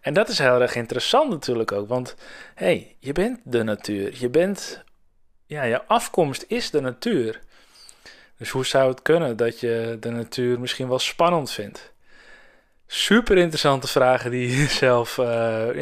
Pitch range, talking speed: 115-150 Hz, 160 wpm